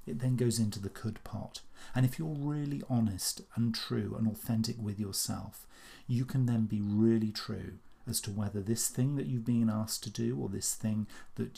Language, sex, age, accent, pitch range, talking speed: English, male, 40-59, British, 105-130 Hz, 200 wpm